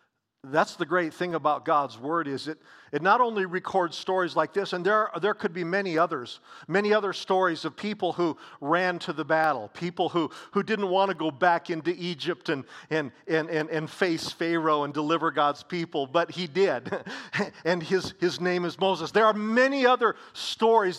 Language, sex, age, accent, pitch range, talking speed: English, male, 50-69, American, 170-225 Hz, 195 wpm